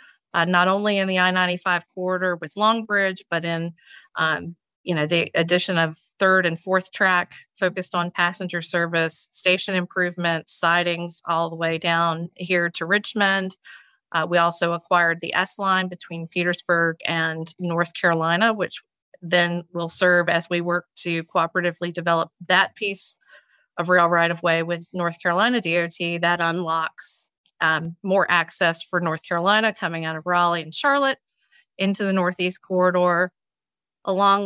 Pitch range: 170-185 Hz